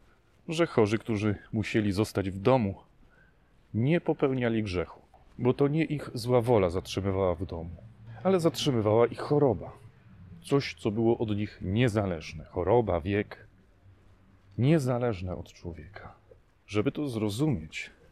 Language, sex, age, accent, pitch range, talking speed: Polish, male, 30-49, native, 95-120 Hz, 125 wpm